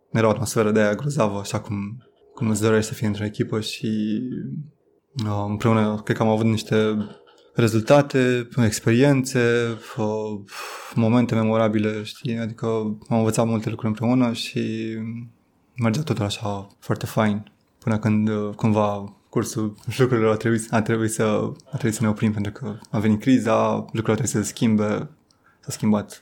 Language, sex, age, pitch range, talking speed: Romanian, male, 20-39, 110-120 Hz, 160 wpm